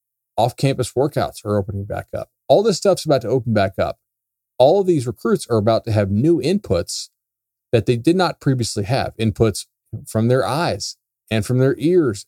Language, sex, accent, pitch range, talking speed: English, male, American, 105-140 Hz, 190 wpm